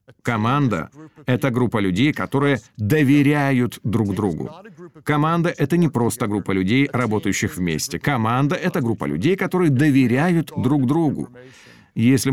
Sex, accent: male, native